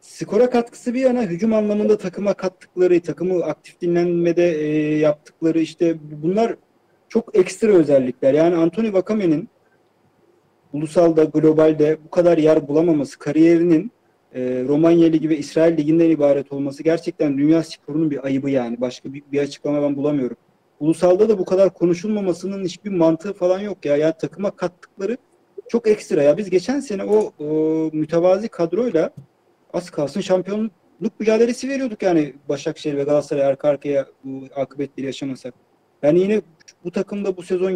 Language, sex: Turkish, male